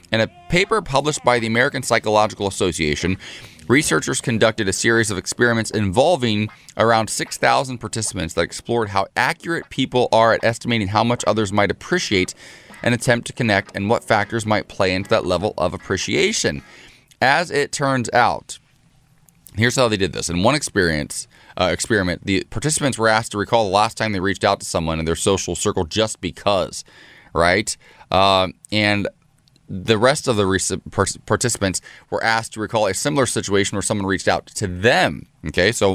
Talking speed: 170 wpm